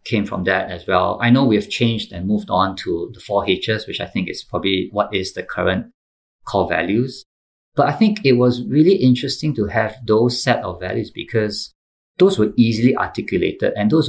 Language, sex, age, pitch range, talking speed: English, male, 50-69, 95-120 Hz, 205 wpm